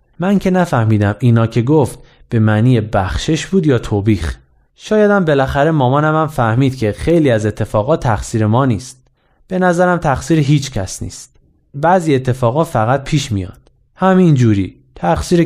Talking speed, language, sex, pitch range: 145 wpm, Persian, male, 115-155 Hz